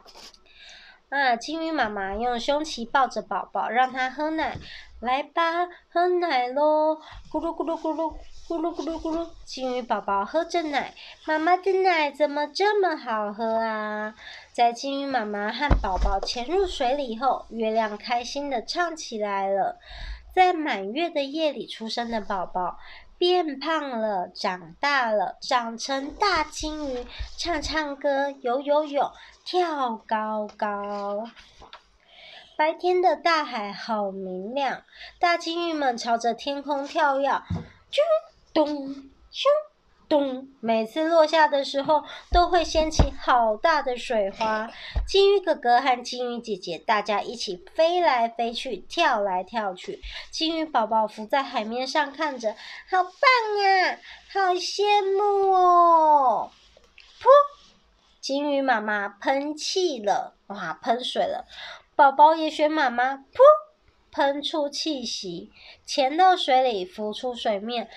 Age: 30-49